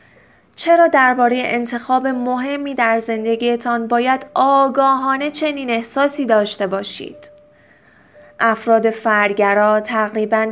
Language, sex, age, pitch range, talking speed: Persian, female, 30-49, 220-275 Hz, 90 wpm